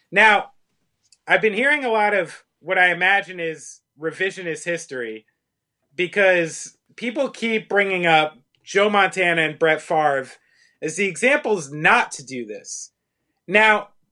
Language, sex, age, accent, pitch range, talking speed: English, male, 30-49, American, 150-200 Hz, 130 wpm